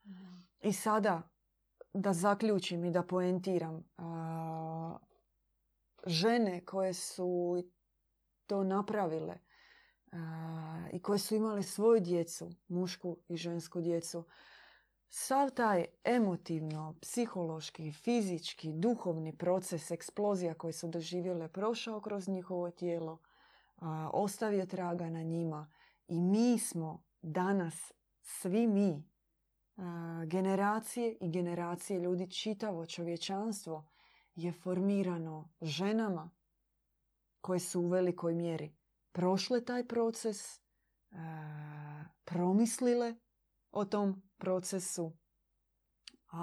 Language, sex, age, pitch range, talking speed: Croatian, female, 30-49, 165-200 Hz, 95 wpm